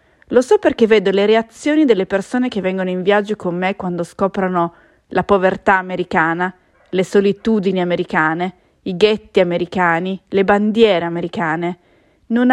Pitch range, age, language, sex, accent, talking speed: 180-230 Hz, 30-49, English, female, Italian, 140 wpm